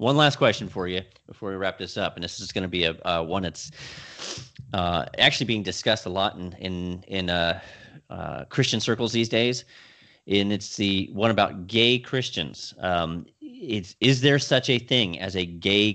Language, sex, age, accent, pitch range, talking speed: English, male, 30-49, American, 90-110 Hz, 195 wpm